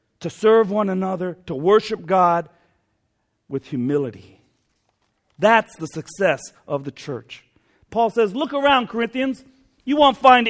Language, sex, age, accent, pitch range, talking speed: English, male, 50-69, American, 140-225 Hz, 130 wpm